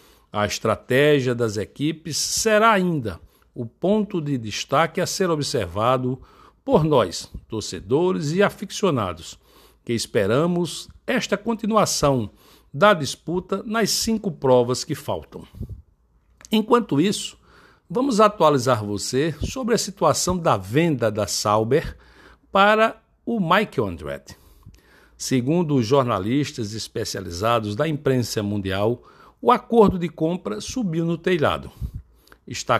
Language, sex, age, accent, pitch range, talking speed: Portuguese, male, 60-79, Brazilian, 115-185 Hz, 110 wpm